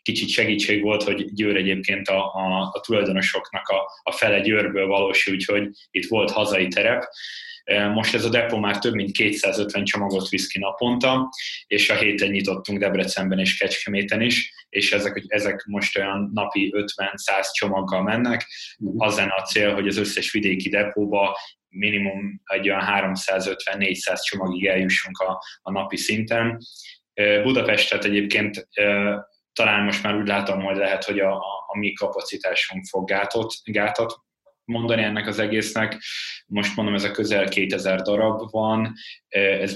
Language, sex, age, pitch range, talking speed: Hungarian, male, 20-39, 95-105 Hz, 145 wpm